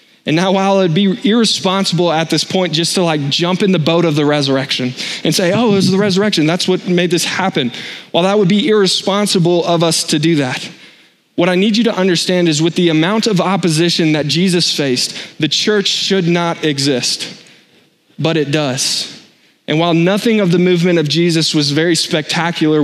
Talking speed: 195 wpm